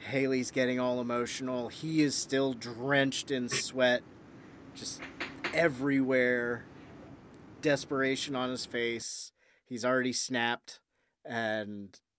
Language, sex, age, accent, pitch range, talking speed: English, male, 30-49, American, 105-135 Hz, 100 wpm